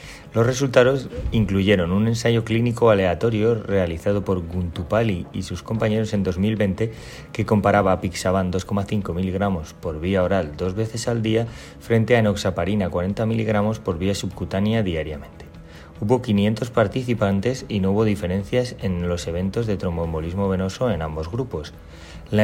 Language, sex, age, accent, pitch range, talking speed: English, male, 30-49, Spanish, 90-115 Hz, 145 wpm